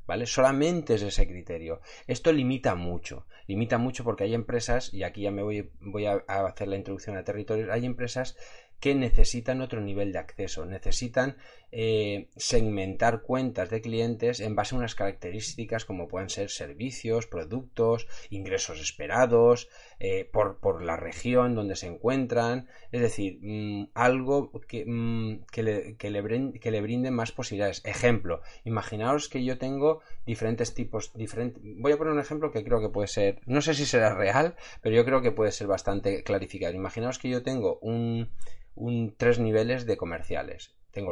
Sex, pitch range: male, 100-125 Hz